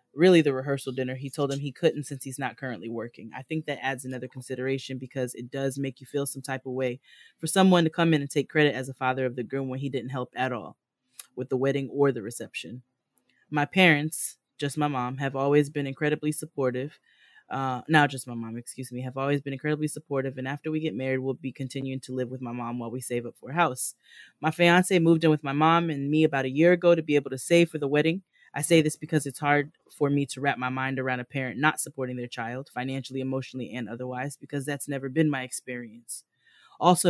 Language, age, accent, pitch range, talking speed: English, 10-29, American, 130-150 Hz, 240 wpm